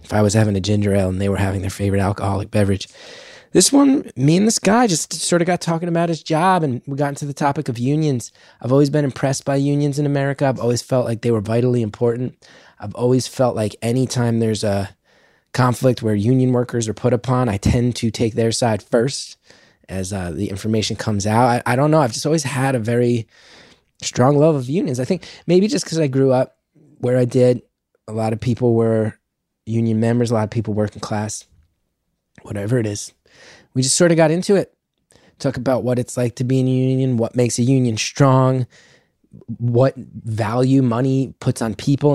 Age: 20-39